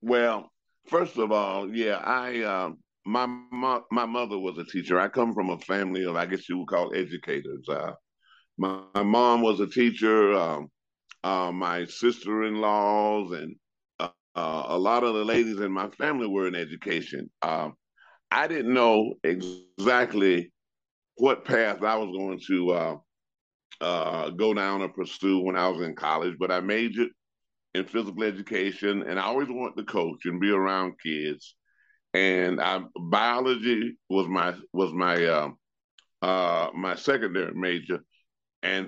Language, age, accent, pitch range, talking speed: English, 50-69, American, 90-115 Hz, 160 wpm